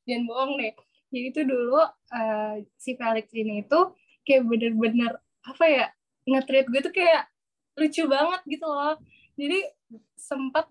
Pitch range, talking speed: 230-305 Hz, 140 wpm